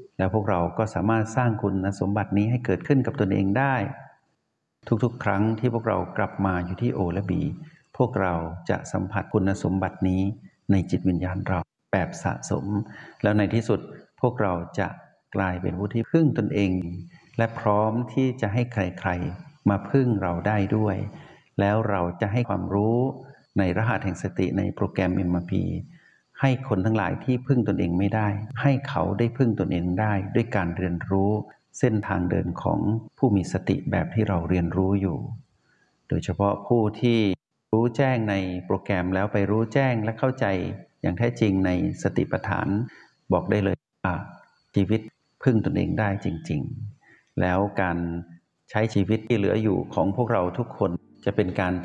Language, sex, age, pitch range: Thai, male, 60-79, 95-115 Hz